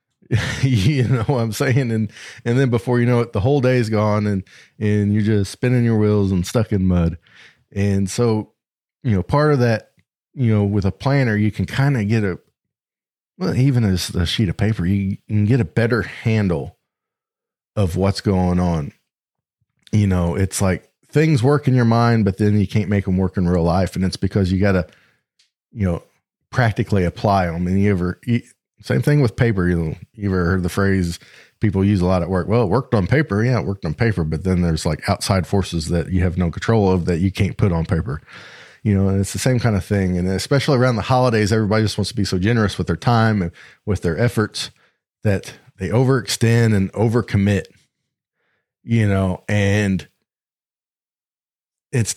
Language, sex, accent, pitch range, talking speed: English, male, American, 95-115 Hz, 210 wpm